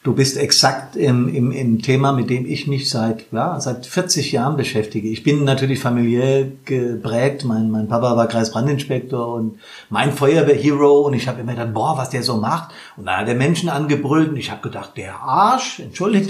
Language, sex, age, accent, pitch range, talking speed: German, male, 50-69, German, 120-150 Hz, 195 wpm